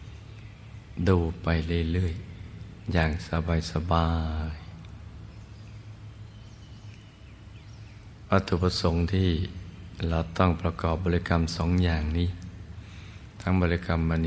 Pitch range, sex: 85-105 Hz, male